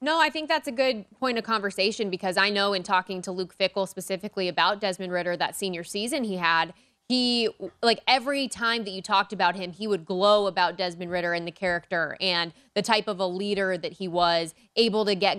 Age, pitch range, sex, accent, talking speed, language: 20-39, 185-230 Hz, female, American, 220 wpm, English